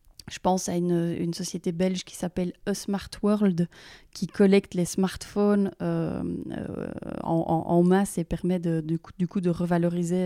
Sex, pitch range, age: female, 175-200 Hz, 30-49